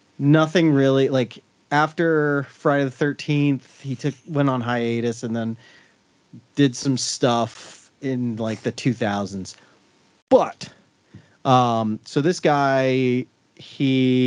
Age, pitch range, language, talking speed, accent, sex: 30-49, 120-155 Hz, English, 120 wpm, American, male